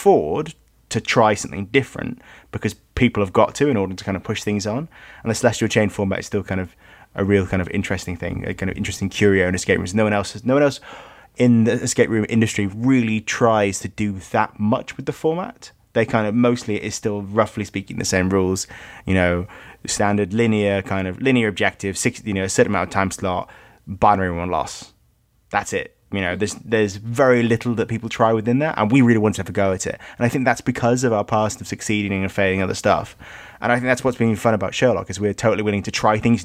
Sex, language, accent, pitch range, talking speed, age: male, English, British, 100-120 Hz, 240 wpm, 20-39